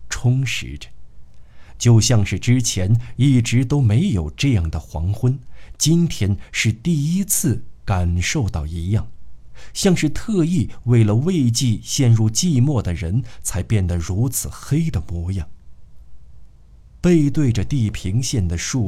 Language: Chinese